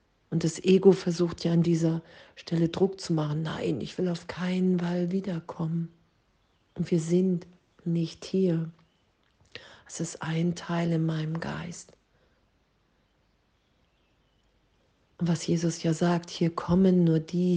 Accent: German